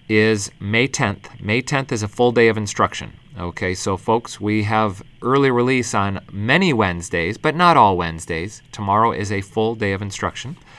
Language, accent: English, American